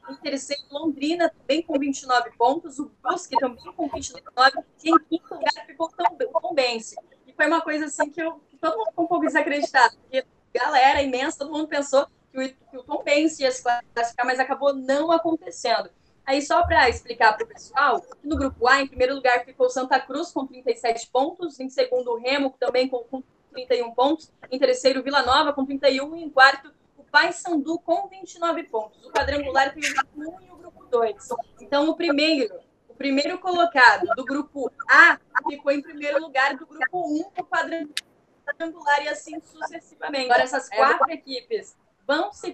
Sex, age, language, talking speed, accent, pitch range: female, 10-29, Portuguese, 190 wpm, Brazilian, 260-320 Hz